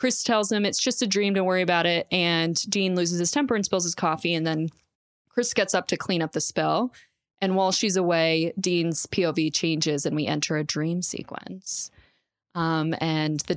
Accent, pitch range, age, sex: American, 165-195 Hz, 20-39, female